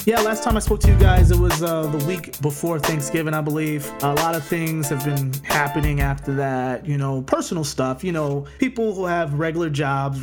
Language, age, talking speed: English, 30-49, 215 wpm